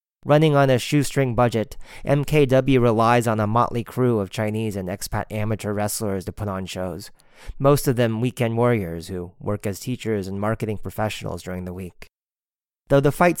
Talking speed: 175 wpm